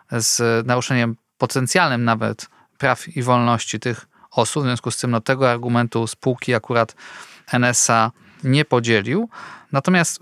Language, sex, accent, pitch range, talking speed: Polish, male, native, 120-155 Hz, 130 wpm